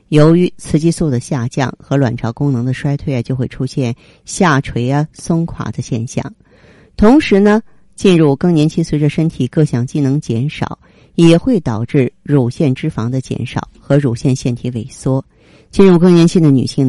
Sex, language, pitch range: female, Chinese, 130-165 Hz